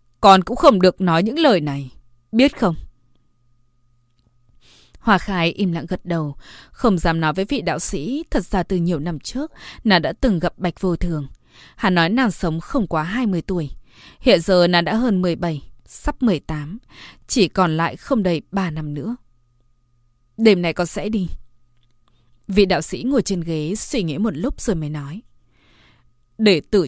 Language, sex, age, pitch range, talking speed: Vietnamese, female, 20-39, 135-215 Hz, 180 wpm